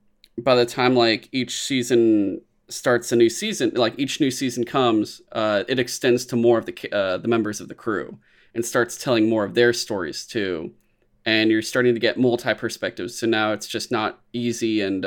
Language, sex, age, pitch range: English, male, 20-39, 105-125 Hz